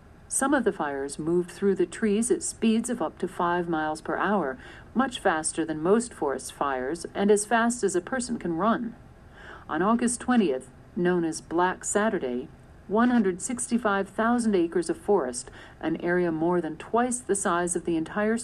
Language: English